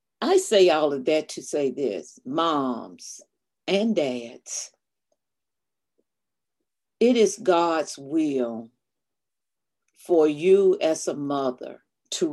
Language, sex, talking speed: English, female, 100 wpm